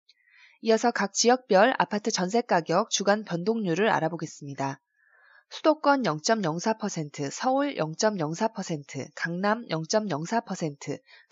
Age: 20-39